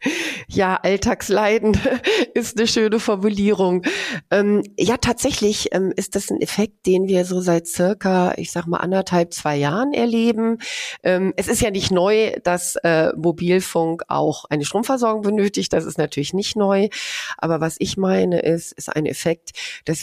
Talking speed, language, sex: 160 wpm, German, female